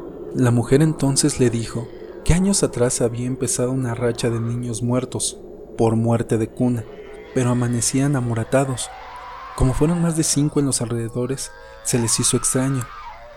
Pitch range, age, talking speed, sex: 120-150 Hz, 40-59, 155 wpm, male